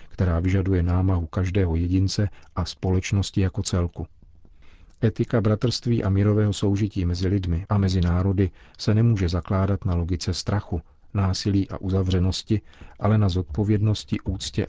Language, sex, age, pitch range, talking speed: Czech, male, 40-59, 90-100 Hz, 130 wpm